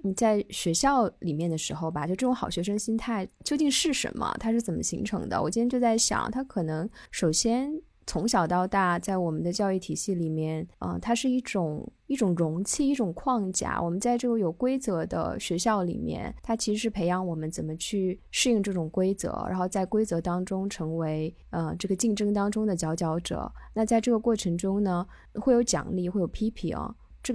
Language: Chinese